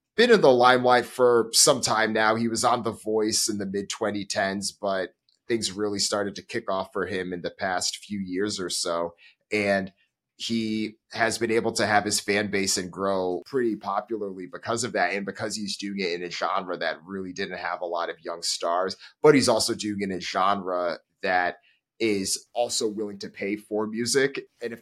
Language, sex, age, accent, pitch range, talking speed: English, male, 30-49, American, 90-110 Hz, 205 wpm